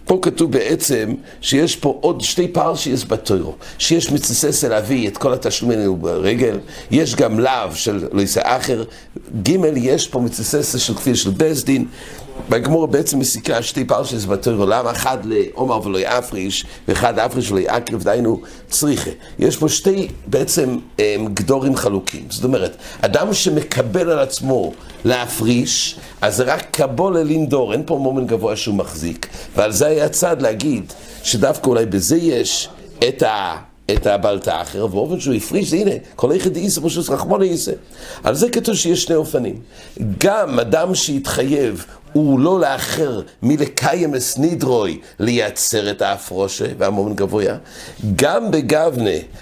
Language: English